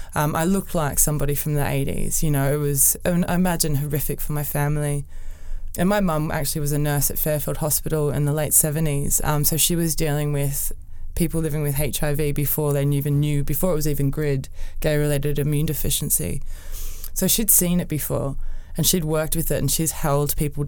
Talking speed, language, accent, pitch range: 200 wpm, English, Australian, 140-165 Hz